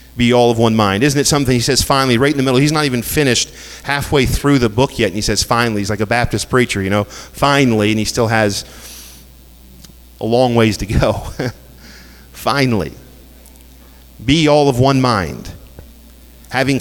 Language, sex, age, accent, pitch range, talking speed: English, male, 40-59, American, 95-135 Hz, 185 wpm